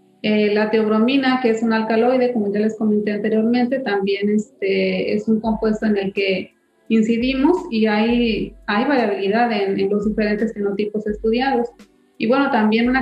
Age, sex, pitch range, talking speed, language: 30-49, female, 210-240 Hz, 160 wpm, Spanish